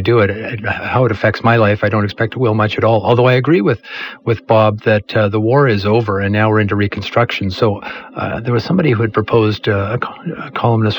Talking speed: 235 wpm